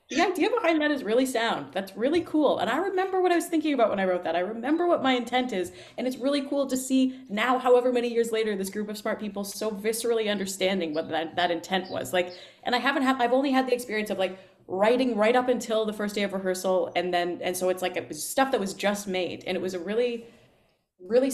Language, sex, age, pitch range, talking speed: English, female, 20-39, 180-245 Hz, 255 wpm